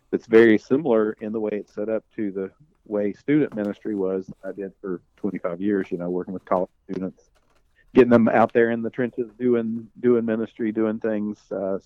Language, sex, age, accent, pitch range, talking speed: English, male, 50-69, American, 95-110 Hz, 195 wpm